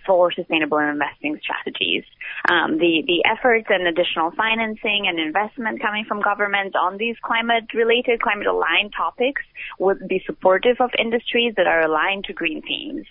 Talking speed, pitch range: 145 wpm, 170-230 Hz